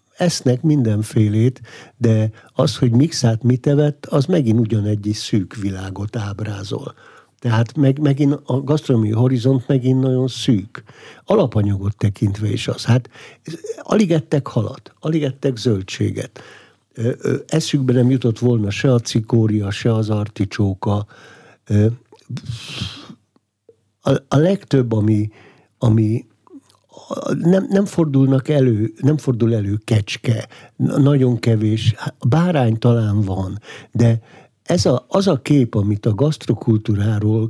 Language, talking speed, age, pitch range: Hungarian, 110 wpm, 60-79, 105-135 Hz